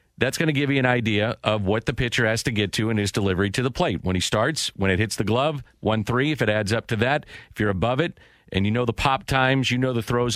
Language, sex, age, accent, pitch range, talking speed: English, male, 50-69, American, 110-140 Hz, 295 wpm